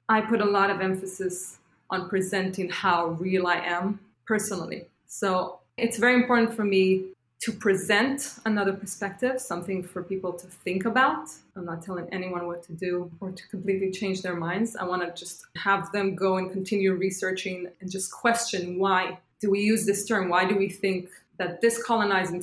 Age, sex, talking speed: 20-39, female, 180 wpm